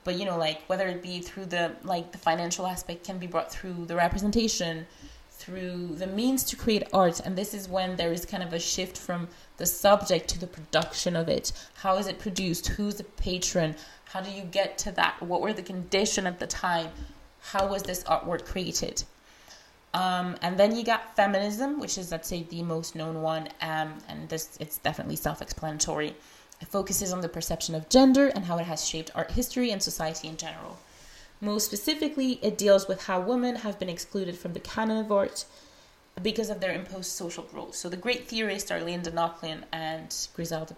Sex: female